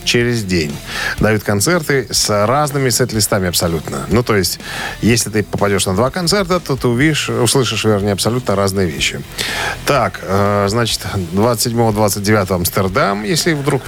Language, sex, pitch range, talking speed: Russian, male, 100-140 Hz, 135 wpm